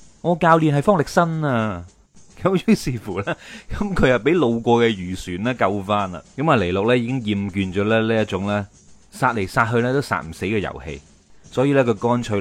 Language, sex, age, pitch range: Chinese, male, 30-49, 95-125 Hz